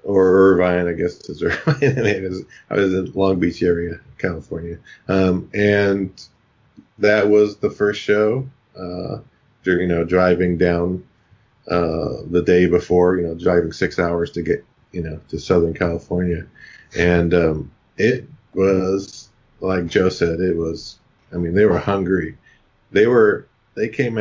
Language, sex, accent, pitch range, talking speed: English, male, American, 90-110 Hz, 150 wpm